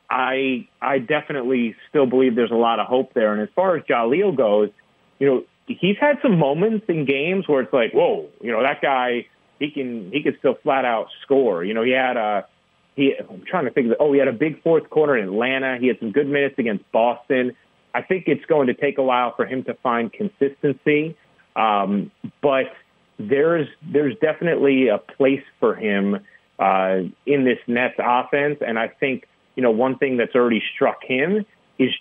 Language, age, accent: English, 30-49, American